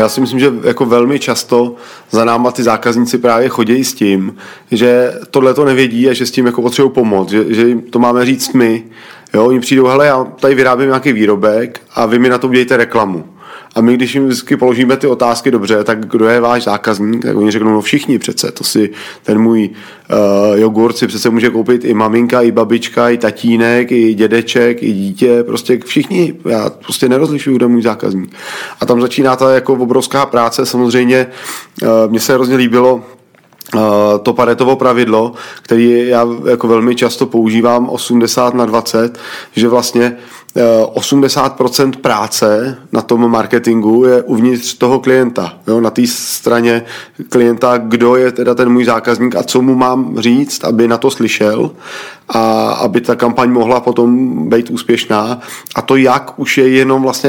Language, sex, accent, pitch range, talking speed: Czech, male, native, 115-125 Hz, 175 wpm